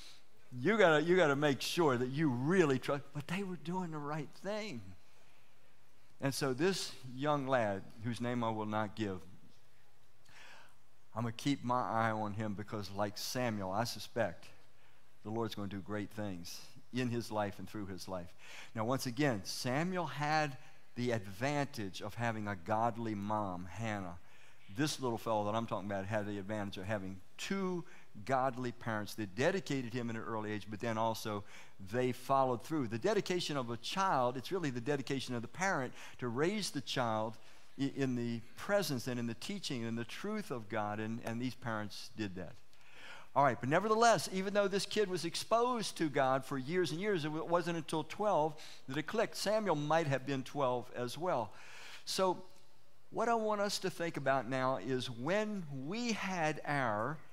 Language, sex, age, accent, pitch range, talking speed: English, male, 50-69, American, 110-155 Hz, 180 wpm